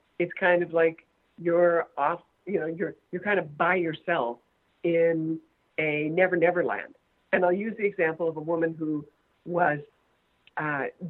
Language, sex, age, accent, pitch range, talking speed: English, female, 50-69, American, 170-225 Hz, 155 wpm